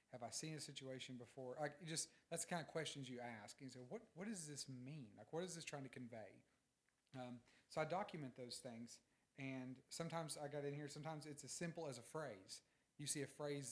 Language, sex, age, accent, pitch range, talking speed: English, male, 40-59, American, 120-145 Hz, 230 wpm